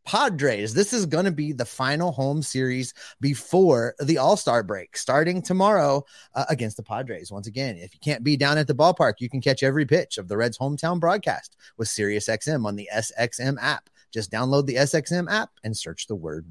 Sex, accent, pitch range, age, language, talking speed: male, American, 135-180 Hz, 30-49, English, 200 wpm